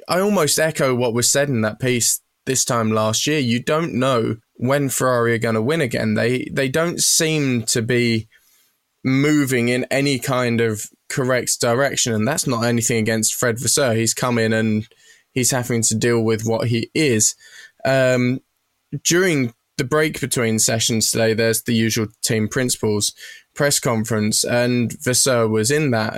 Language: English